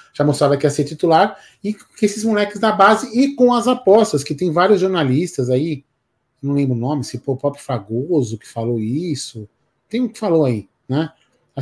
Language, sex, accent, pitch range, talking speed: Portuguese, male, Brazilian, 135-180 Hz, 200 wpm